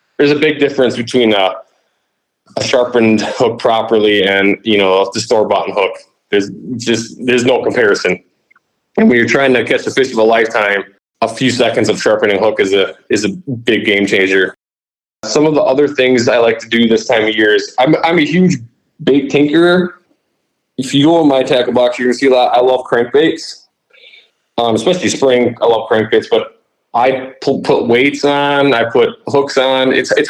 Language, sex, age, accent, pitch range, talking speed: English, male, 20-39, American, 110-145 Hz, 195 wpm